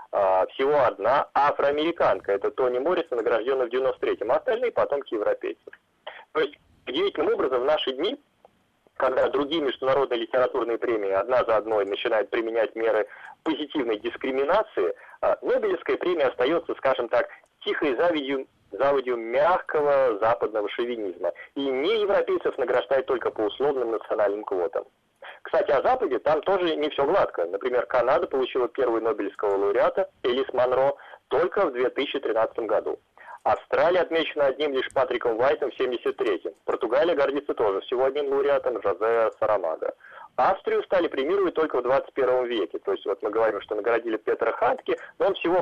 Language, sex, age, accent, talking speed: Russian, male, 30-49, native, 140 wpm